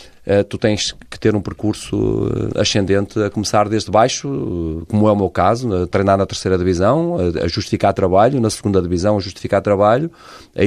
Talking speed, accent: 175 wpm, Portuguese